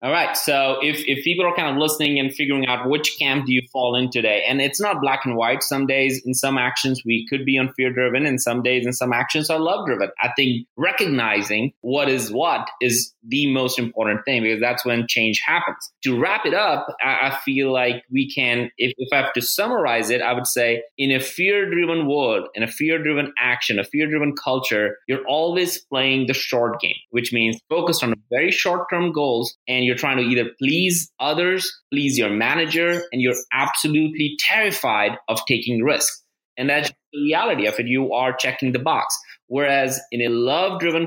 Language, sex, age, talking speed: English, male, 20-39, 195 wpm